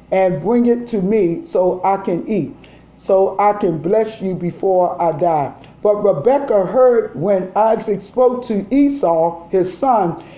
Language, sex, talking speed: English, male, 155 wpm